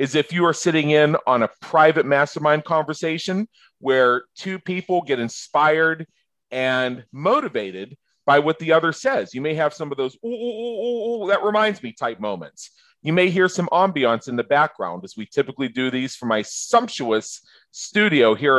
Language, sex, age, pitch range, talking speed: English, male, 40-59, 115-160 Hz, 170 wpm